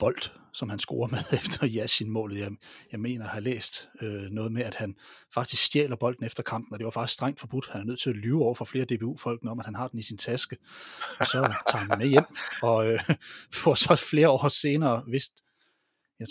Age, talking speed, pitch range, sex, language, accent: 30-49, 245 wpm, 115-145 Hz, male, Danish, native